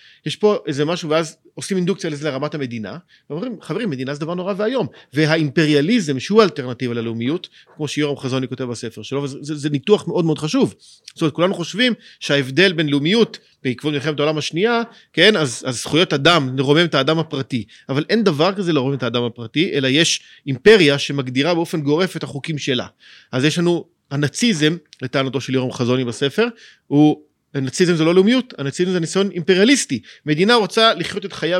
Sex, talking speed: male, 170 wpm